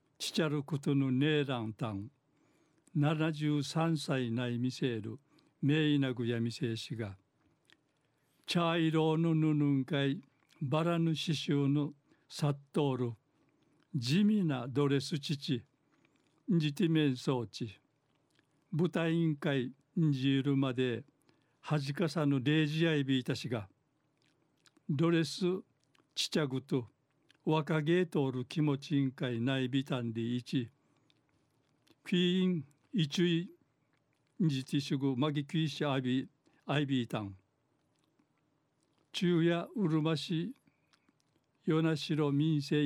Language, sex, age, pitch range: Japanese, male, 60-79, 135-160 Hz